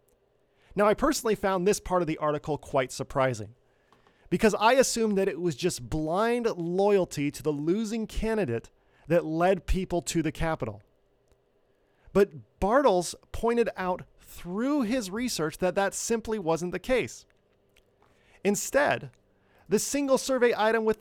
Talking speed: 140 wpm